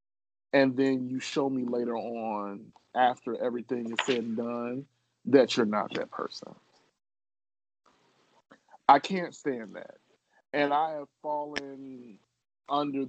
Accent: American